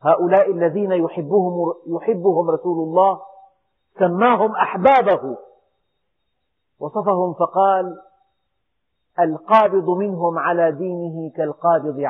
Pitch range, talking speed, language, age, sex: 170-225 Hz, 70 wpm, Arabic, 40-59, male